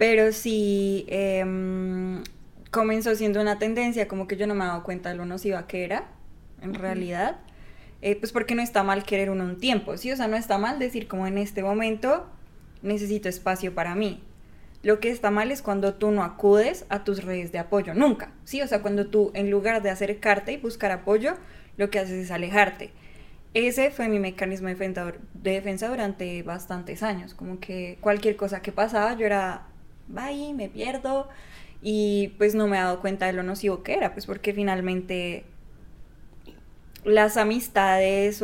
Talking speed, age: 185 wpm, 10-29